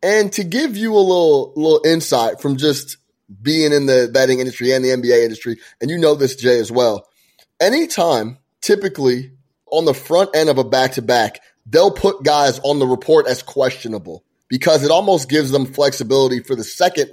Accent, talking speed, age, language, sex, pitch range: American, 180 wpm, 30-49, English, male, 125-155 Hz